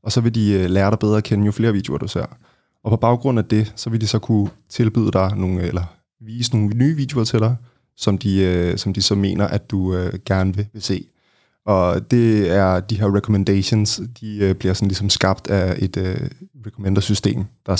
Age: 20-39